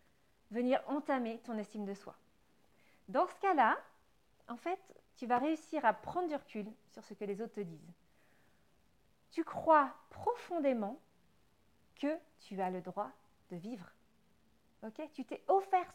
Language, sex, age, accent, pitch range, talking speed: French, female, 40-59, French, 205-295 Hz, 145 wpm